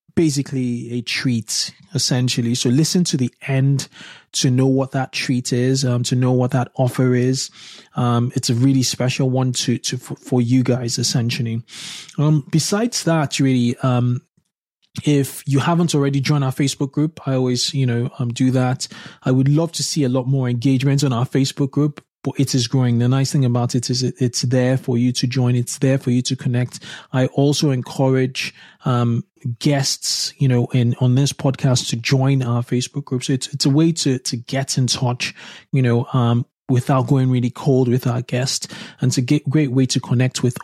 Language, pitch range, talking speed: English, 125-140 Hz, 195 wpm